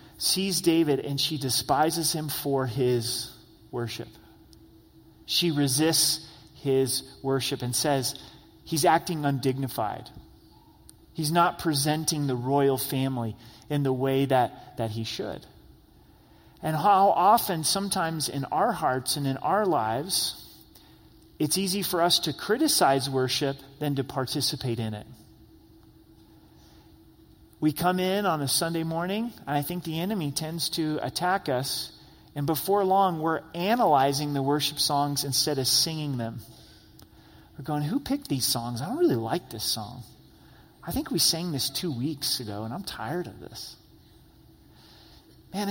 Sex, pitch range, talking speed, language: male, 130-170 Hz, 140 wpm, English